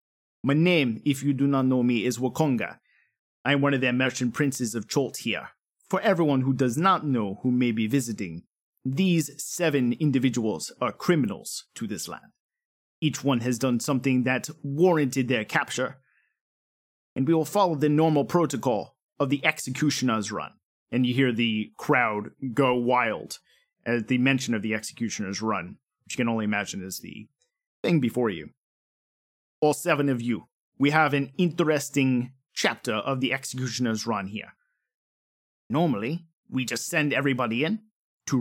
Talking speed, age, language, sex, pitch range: 160 wpm, 30-49, English, male, 125-155 Hz